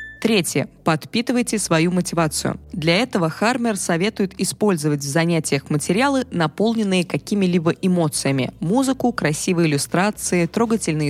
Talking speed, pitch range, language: 105 wpm, 160-205 Hz, Russian